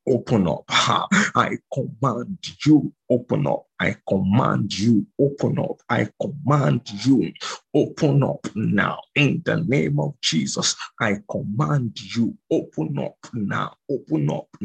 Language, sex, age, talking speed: English, male, 50-69, 130 wpm